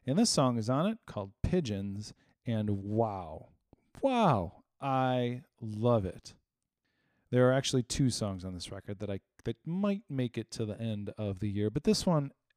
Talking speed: 175 wpm